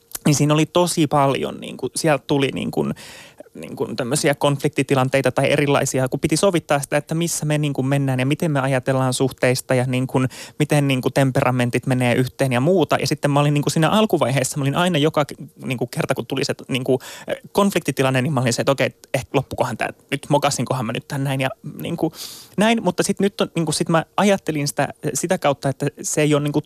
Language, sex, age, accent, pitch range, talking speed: Finnish, male, 20-39, native, 140-165 Hz, 200 wpm